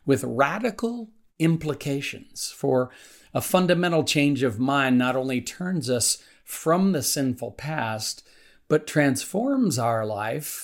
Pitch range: 120-155 Hz